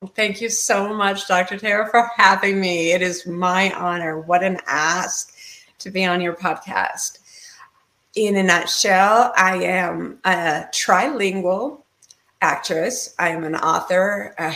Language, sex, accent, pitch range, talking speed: English, female, American, 175-200 Hz, 140 wpm